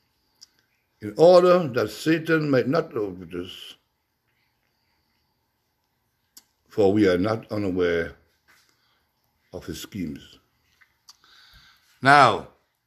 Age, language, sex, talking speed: 60-79, English, male, 80 wpm